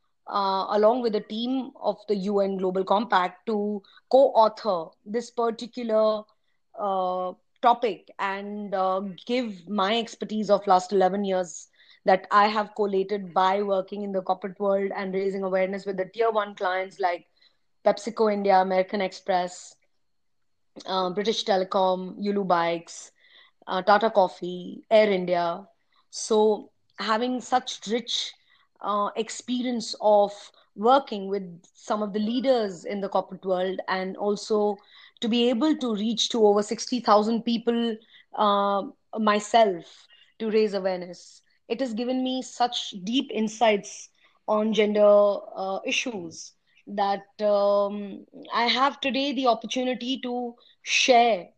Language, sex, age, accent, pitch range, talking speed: English, female, 20-39, Indian, 190-235 Hz, 130 wpm